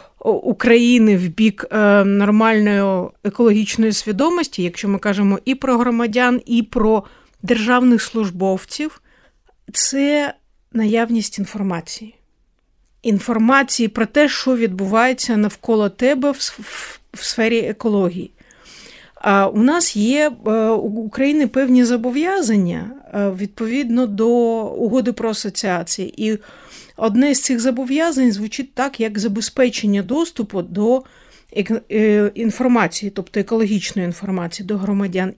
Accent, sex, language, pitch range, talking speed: native, female, Ukrainian, 200-245 Hz, 100 wpm